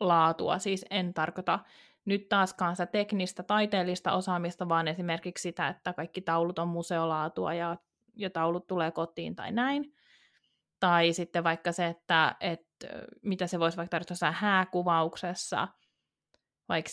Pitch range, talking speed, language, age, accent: 165-200 Hz, 140 wpm, Finnish, 20-39, native